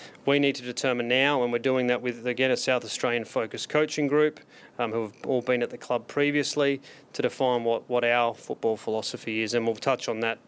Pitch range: 125-145 Hz